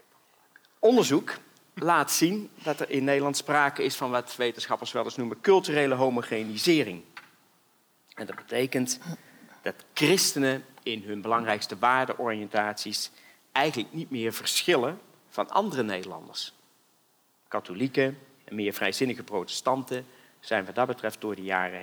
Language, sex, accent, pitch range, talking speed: Dutch, male, Dutch, 105-140 Hz, 125 wpm